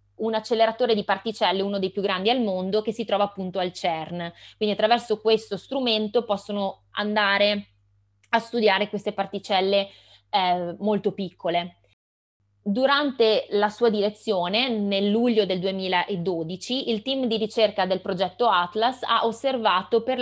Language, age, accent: Italian, 20-39, native